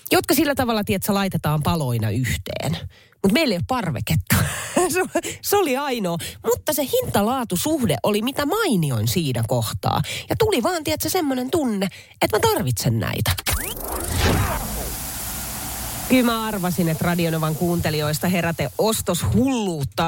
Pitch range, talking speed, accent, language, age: 140-205 Hz, 130 wpm, native, Finnish, 30-49